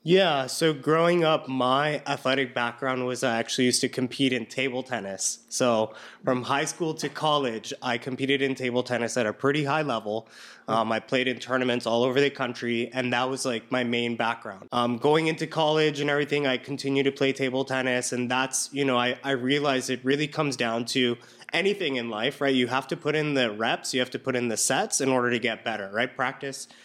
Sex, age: male, 20-39